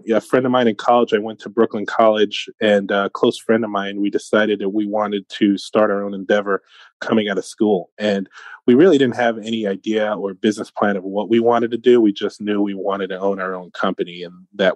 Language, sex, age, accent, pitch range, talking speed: English, male, 30-49, American, 95-115 Hz, 240 wpm